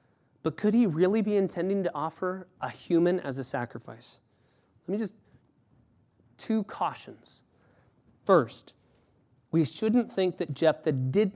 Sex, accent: male, American